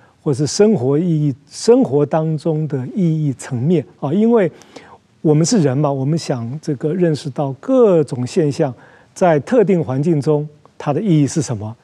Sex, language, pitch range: male, Chinese, 135-175 Hz